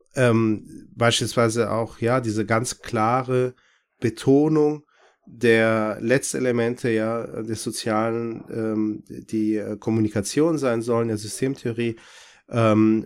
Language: German